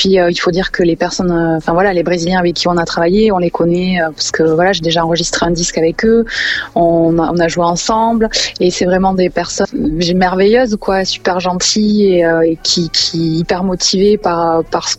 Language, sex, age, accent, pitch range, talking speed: French, female, 20-39, French, 170-190 Hz, 210 wpm